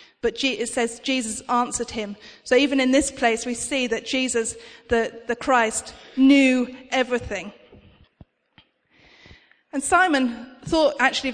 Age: 40-59